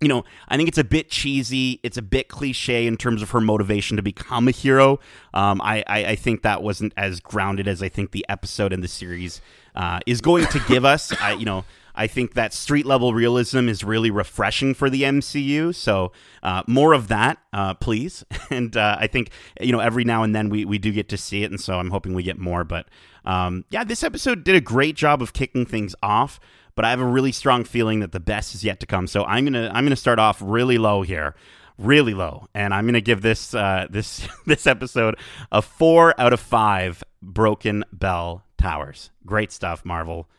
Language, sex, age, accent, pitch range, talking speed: English, male, 30-49, American, 105-150 Hz, 220 wpm